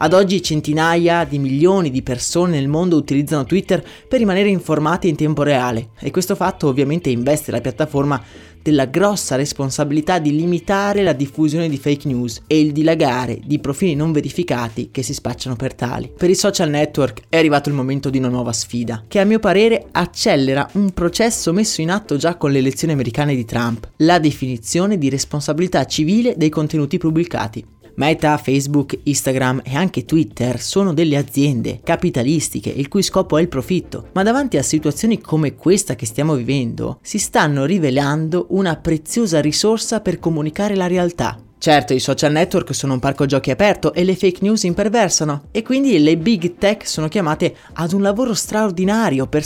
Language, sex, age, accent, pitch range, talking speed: Italian, male, 20-39, native, 135-180 Hz, 175 wpm